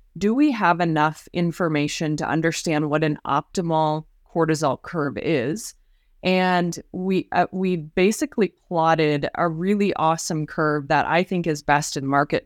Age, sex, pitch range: 20-39, female, 150-185 Hz